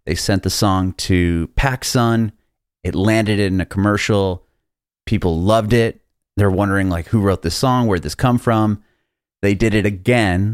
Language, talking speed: English, 165 wpm